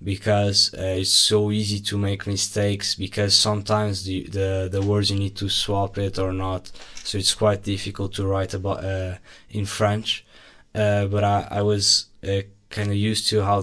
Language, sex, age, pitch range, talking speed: English, male, 20-39, 100-105 Hz, 185 wpm